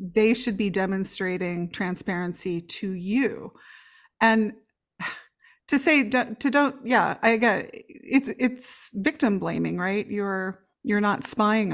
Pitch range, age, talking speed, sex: 200-250 Hz, 30-49, 135 wpm, female